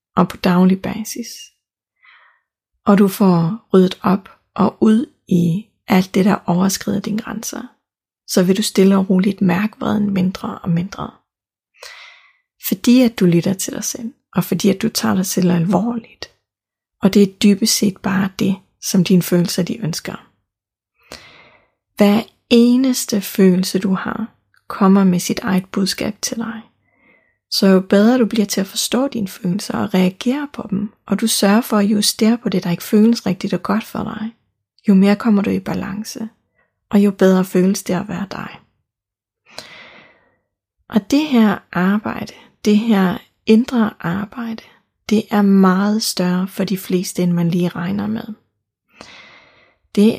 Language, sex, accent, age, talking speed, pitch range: Danish, female, native, 30-49, 160 wpm, 190-225 Hz